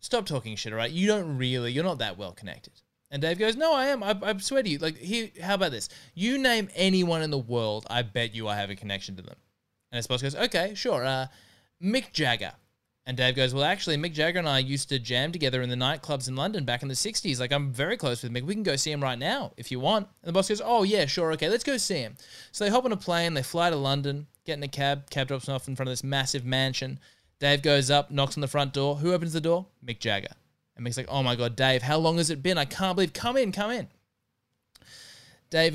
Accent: Australian